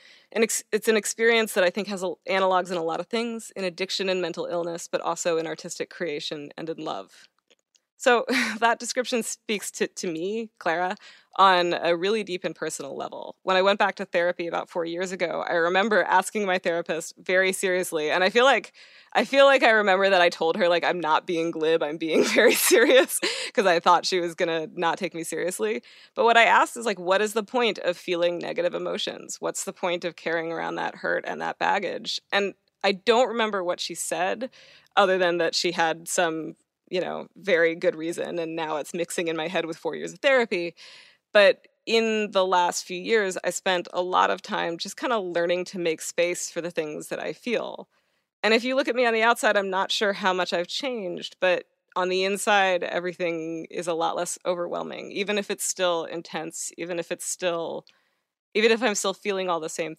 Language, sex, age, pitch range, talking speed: English, female, 20-39, 170-210 Hz, 215 wpm